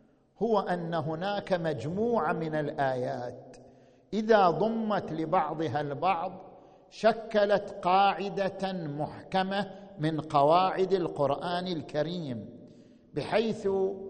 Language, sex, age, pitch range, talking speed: Arabic, male, 50-69, 150-195 Hz, 75 wpm